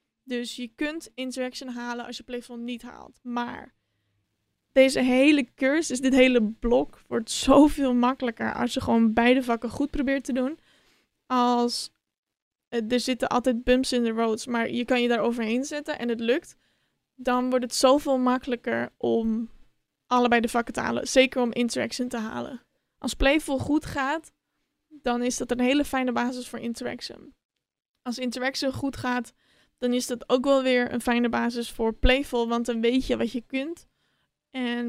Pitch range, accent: 240-265 Hz, Dutch